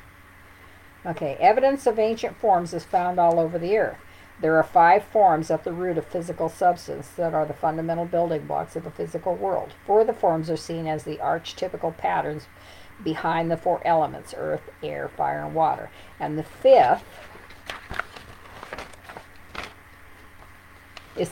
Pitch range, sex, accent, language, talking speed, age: 145-185 Hz, female, American, English, 150 wpm, 50-69